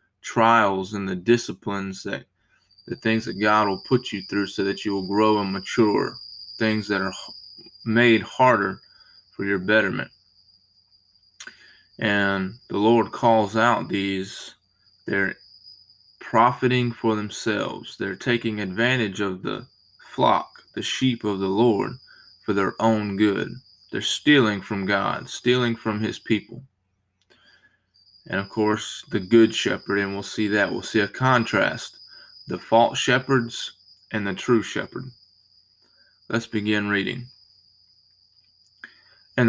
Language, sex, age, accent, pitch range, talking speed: English, male, 20-39, American, 100-120 Hz, 130 wpm